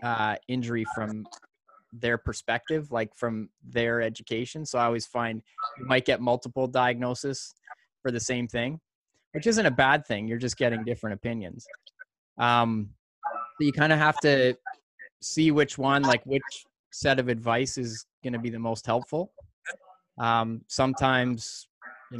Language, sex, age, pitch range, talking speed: English, male, 20-39, 115-140 Hz, 150 wpm